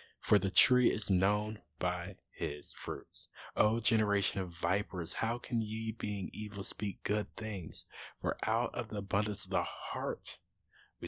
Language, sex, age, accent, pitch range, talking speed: English, male, 20-39, American, 90-110 Hz, 155 wpm